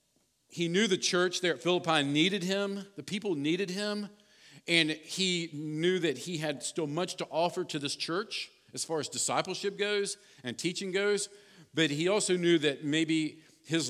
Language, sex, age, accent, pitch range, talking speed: English, male, 50-69, American, 145-185 Hz, 175 wpm